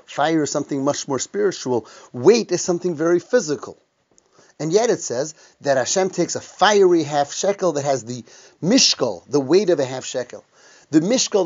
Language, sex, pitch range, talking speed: English, male, 135-180 Hz, 180 wpm